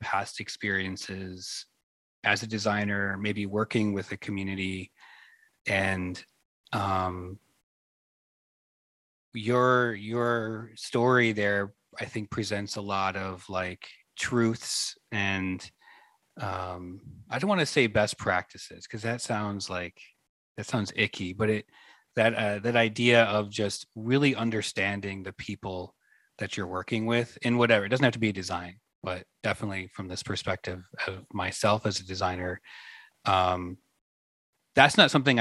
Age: 30-49